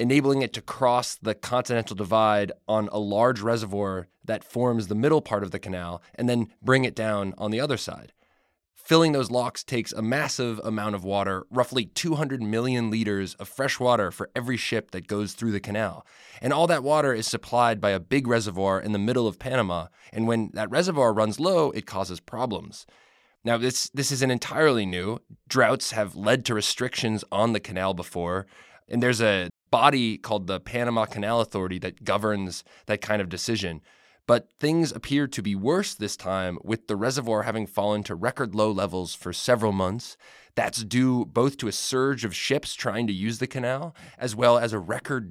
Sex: male